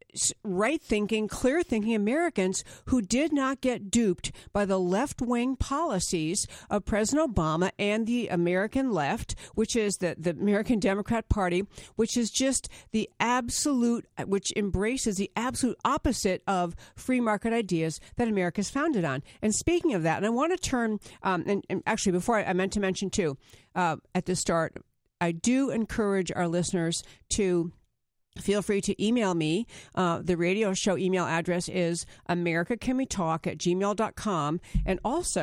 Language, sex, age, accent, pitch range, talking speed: English, female, 50-69, American, 175-235 Hz, 150 wpm